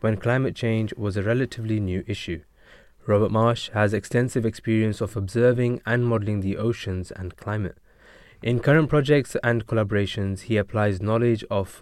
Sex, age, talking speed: male, 20-39, 150 wpm